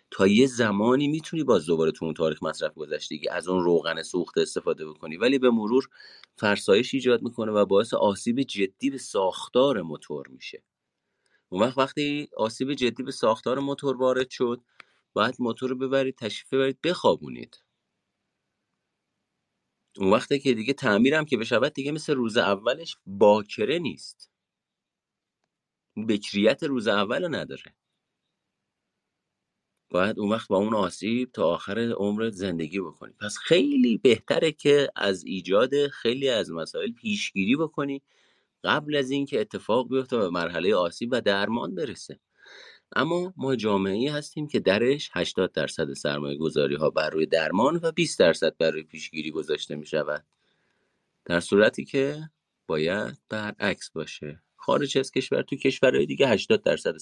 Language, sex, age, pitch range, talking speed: Persian, male, 40-59, 105-145 Hz, 140 wpm